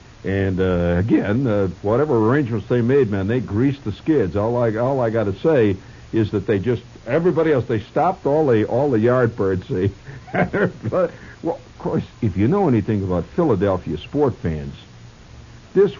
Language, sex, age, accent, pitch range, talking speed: English, male, 60-79, American, 95-135 Hz, 175 wpm